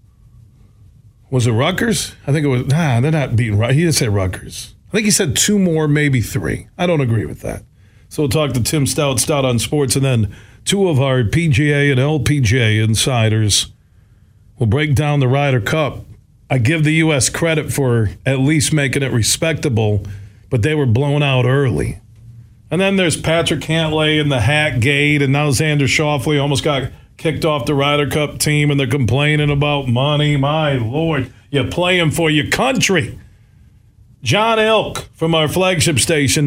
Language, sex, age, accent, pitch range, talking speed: English, male, 40-59, American, 115-150 Hz, 180 wpm